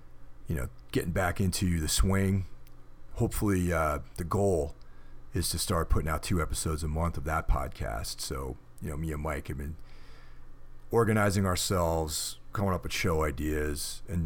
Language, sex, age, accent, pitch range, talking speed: English, male, 40-59, American, 75-90 Hz, 165 wpm